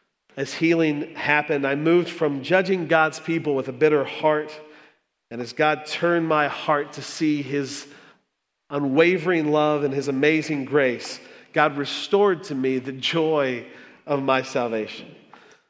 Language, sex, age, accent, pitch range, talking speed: English, male, 40-59, American, 140-170 Hz, 140 wpm